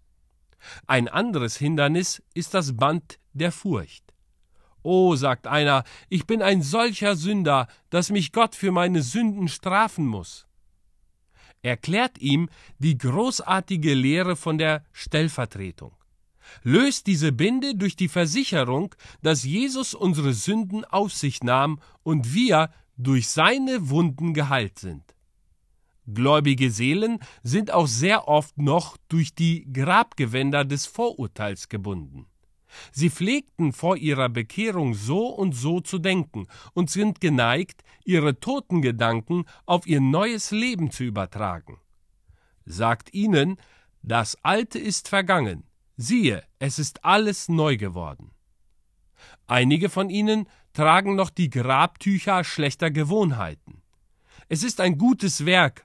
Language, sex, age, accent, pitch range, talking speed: German, male, 40-59, German, 125-190 Hz, 120 wpm